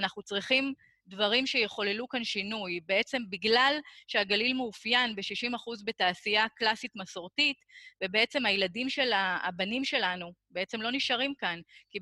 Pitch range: 200-260 Hz